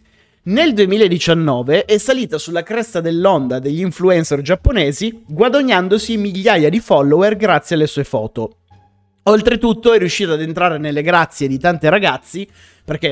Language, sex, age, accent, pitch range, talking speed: Italian, male, 30-49, native, 135-185 Hz, 135 wpm